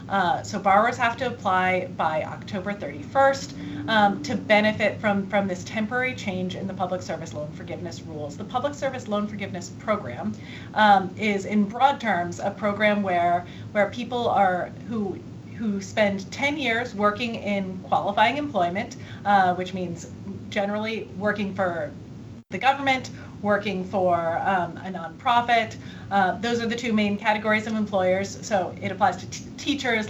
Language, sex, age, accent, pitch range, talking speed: English, female, 30-49, American, 185-225 Hz, 155 wpm